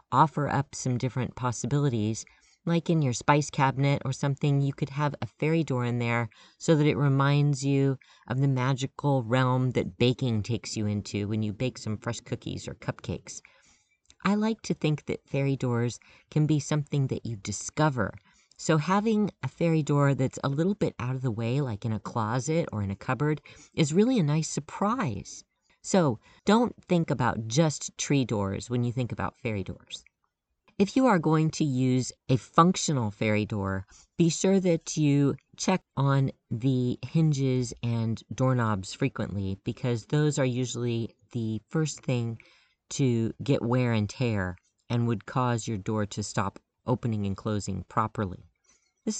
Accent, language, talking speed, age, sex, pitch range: American, English, 170 wpm, 40-59, female, 115-150 Hz